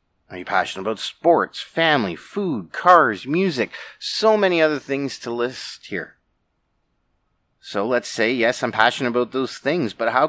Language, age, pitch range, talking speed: English, 30-49, 110-140 Hz, 155 wpm